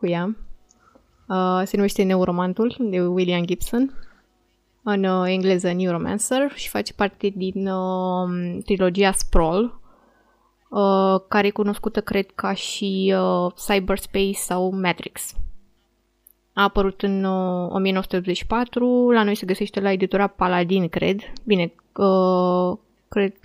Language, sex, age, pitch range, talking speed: Romanian, female, 20-39, 185-210 Hz, 100 wpm